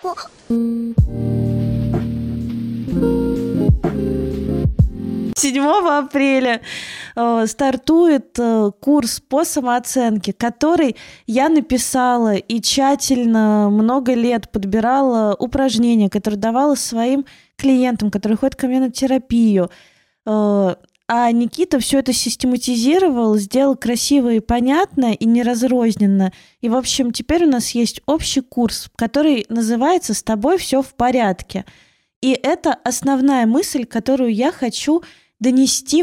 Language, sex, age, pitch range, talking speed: Russian, female, 20-39, 215-270 Hz, 105 wpm